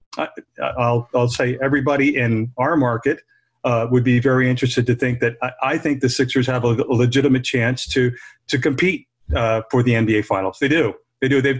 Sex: male